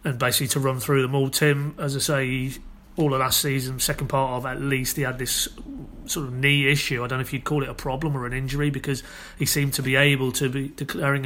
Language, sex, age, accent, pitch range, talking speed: English, male, 30-49, British, 130-145 Hz, 255 wpm